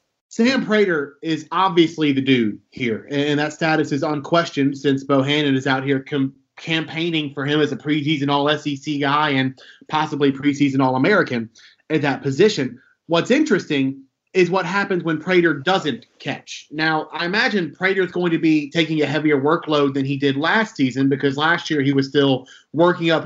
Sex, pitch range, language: male, 140-175 Hz, English